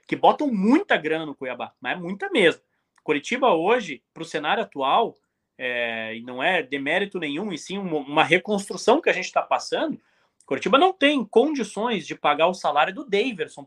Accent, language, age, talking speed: Brazilian, Portuguese, 20-39, 180 wpm